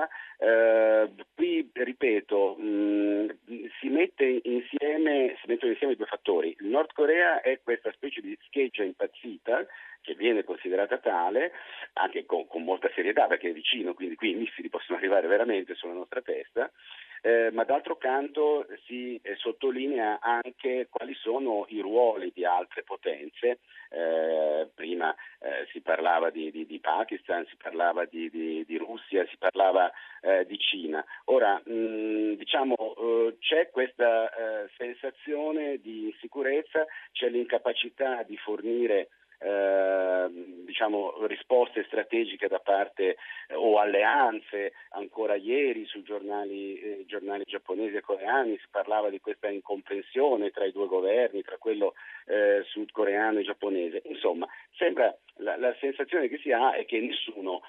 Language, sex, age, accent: Italian, male, 50-69, native